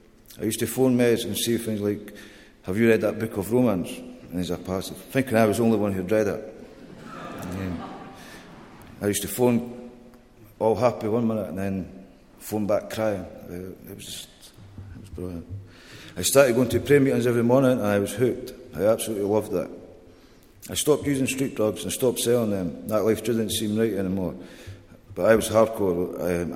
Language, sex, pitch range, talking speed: English, male, 95-115 Hz, 200 wpm